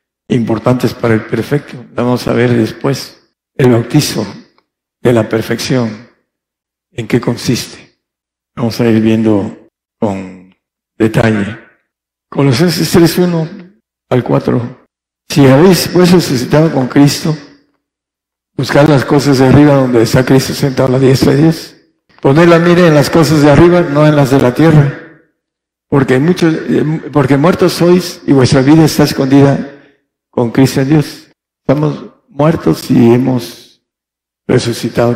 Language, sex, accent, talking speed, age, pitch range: Spanish, male, Mexican, 135 wpm, 60-79, 120-145 Hz